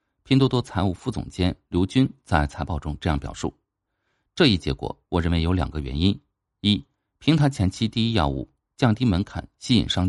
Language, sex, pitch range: Chinese, male, 80-120 Hz